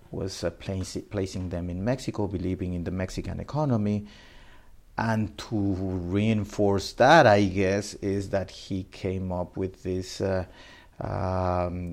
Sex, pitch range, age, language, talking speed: male, 90-105 Hz, 50-69, English, 135 wpm